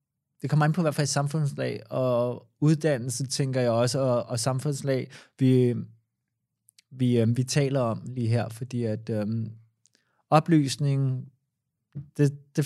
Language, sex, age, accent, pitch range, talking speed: Danish, male, 20-39, native, 115-135 Hz, 140 wpm